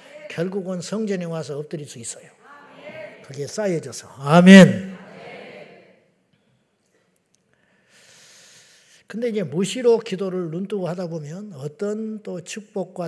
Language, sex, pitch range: Korean, male, 140-195 Hz